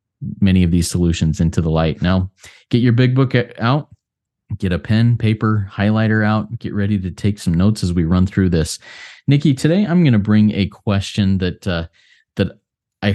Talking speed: 190 wpm